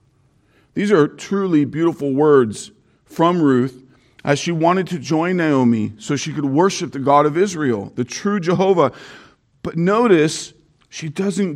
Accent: American